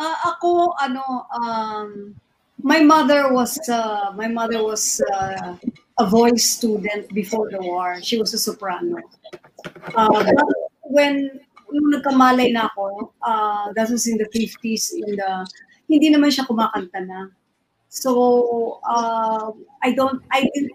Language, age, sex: Filipino, 40-59, female